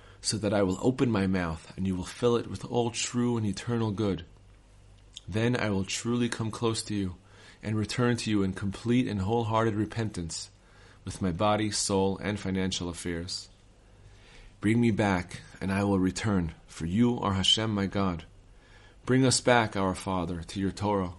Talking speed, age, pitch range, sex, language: 180 wpm, 30-49, 95-115 Hz, male, English